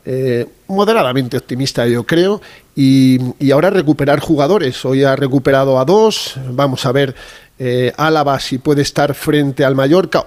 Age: 40-59